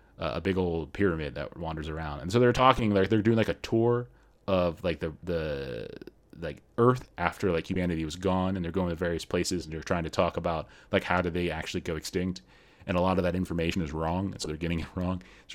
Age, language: 30-49, English